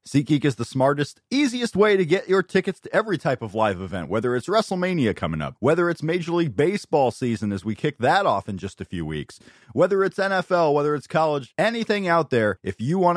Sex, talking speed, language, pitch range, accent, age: male, 225 wpm, English, 115-165 Hz, American, 30-49